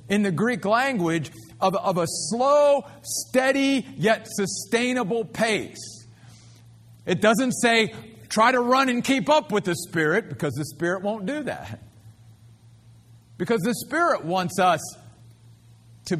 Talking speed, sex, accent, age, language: 135 wpm, male, American, 50-69, English